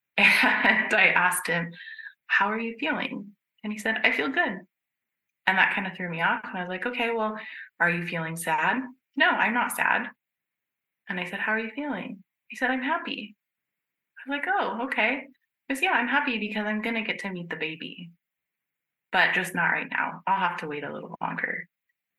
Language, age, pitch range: English, 20-39, 160-235 Hz